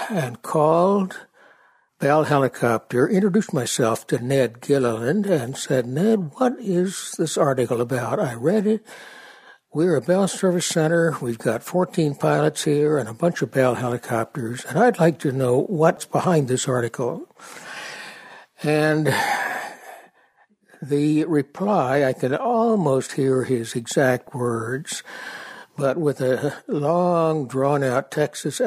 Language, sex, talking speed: English, male, 130 wpm